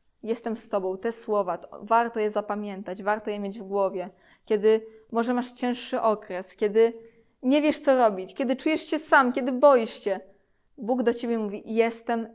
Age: 20-39